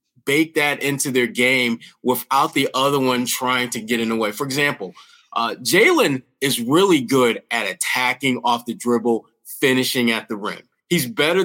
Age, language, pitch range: 30-49, English, 130-175 Hz